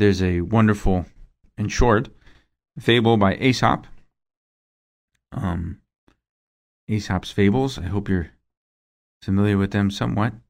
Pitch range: 90-115 Hz